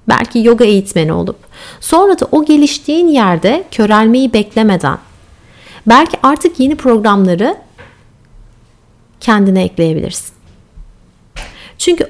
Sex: female